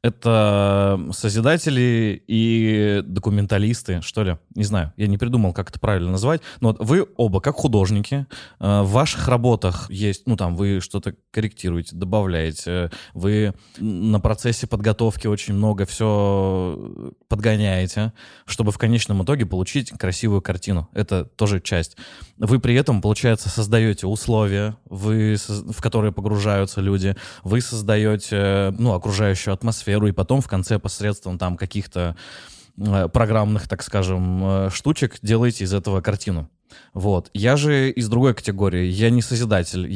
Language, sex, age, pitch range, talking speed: Russian, male, 20-39, 95-115 Hz, 130 wpm